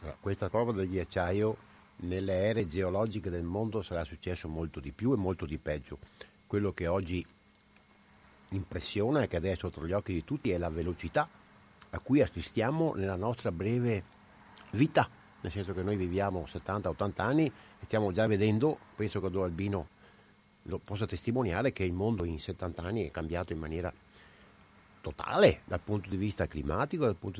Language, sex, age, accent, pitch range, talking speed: Italian, male, 60-79, native, 85-110 Hz, 165 wpm